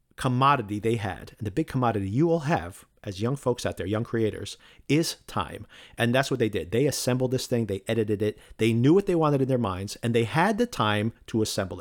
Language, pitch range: English, 100-120 Hz